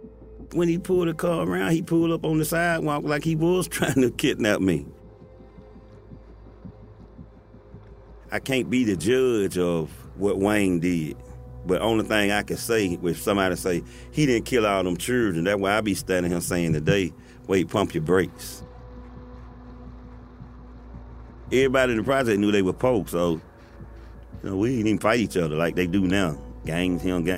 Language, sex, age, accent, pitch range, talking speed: English, male, 40-59, American, 85-115 Hz, 170 wpm